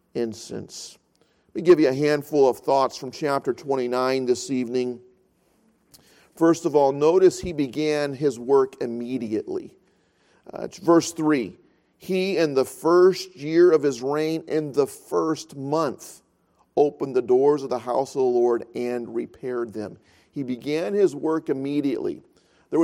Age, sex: 40-59, male